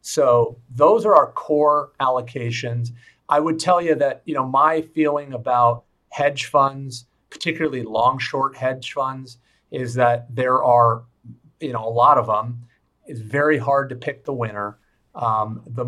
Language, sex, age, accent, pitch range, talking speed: English, male, 40-59, American, 115-145 Hz, 160 wpm